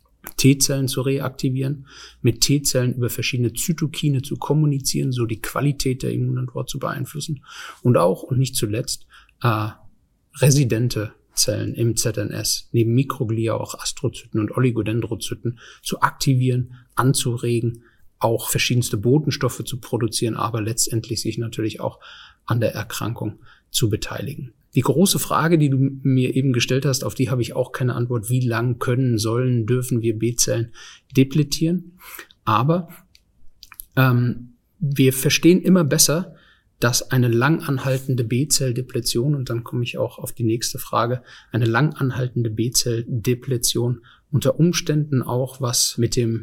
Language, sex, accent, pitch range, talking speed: German, male, German, 115-140 Hz, 135 wpm